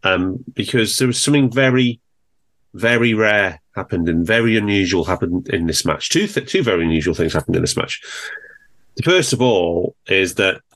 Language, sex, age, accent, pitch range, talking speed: English, male, 30-49, British, 90-130 Hz, 180 wpm